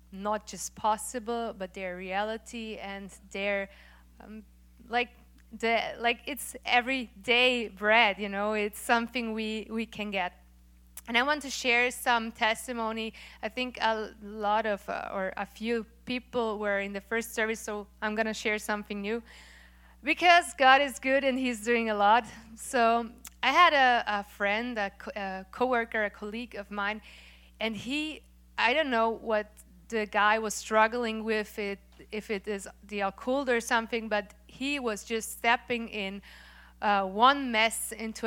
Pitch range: 205-235 Hz